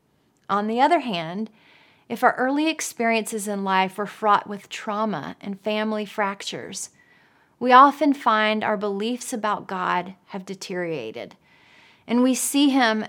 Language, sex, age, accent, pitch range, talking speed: English, female, 30-49, American, 195-245 Hz, 140 wpm